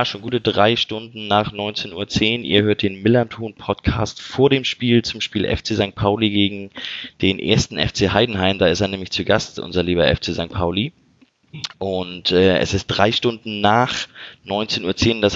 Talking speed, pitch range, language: 180 wpm, 100-120 Hz, German